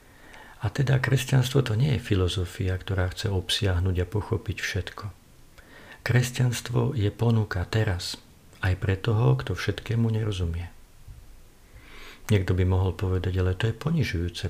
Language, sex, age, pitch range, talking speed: Slovak, male, 50-69, 90-110 Hz, 130 wpm